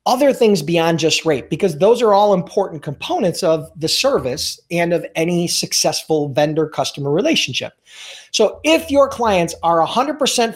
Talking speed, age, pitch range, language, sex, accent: 155 wpm, 40-59, 155-220 Hz, English, male, American